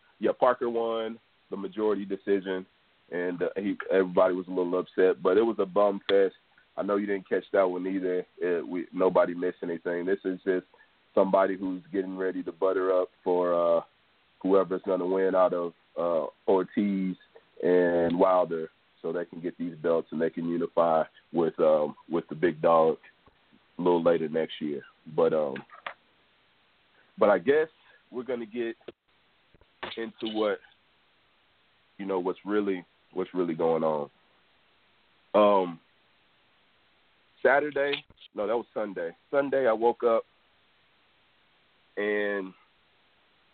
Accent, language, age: American, English, 30-49